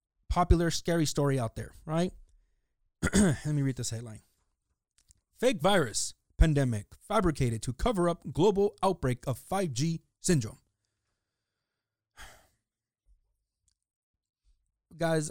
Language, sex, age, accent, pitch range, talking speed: English, male, 30-49, American, 115-165 Hz, 95 wpm